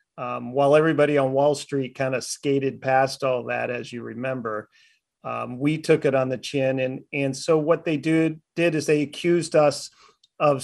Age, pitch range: 40-59, 135-155 Hz